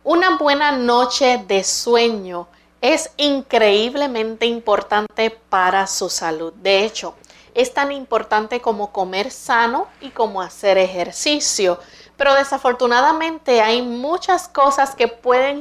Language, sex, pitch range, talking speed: Spanish, female, 200-260 Hz, 115 wpm